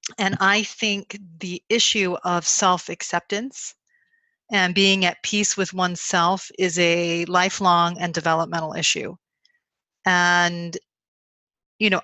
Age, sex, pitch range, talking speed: 30-49, female, 170-195 Hz, 110 wpm